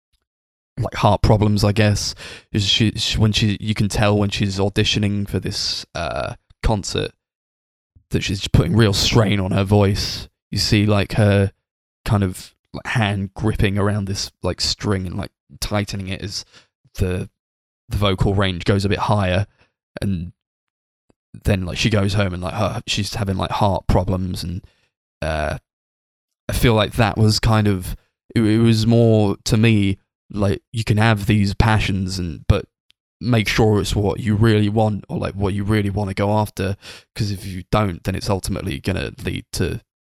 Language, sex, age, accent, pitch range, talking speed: English, male, 20-39, British, 95-110 Hz, 170 wpm